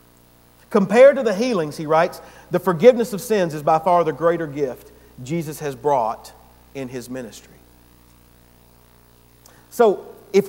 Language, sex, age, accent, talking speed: English, male, 50-69, American, 135 wpm